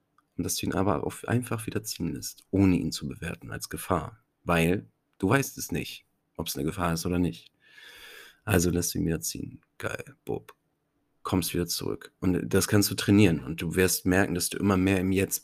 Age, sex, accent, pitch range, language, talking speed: 40-59, male, German, 85-100 Hz, German, 200 wpm